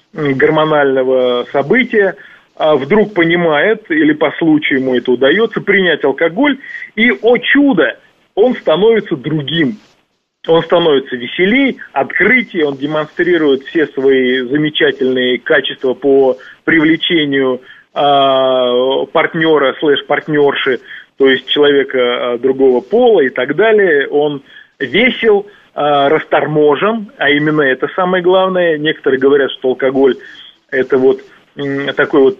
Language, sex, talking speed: Russian, male, 105 wpm